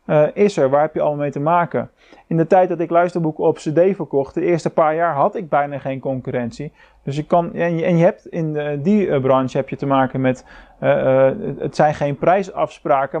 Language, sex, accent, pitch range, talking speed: Dutch, male, Dutch, 135-175 Hz, 225 wpm